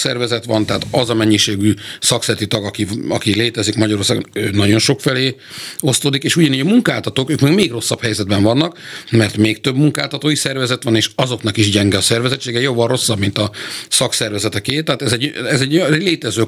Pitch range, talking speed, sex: 105-135 Hz, 180 wpm, male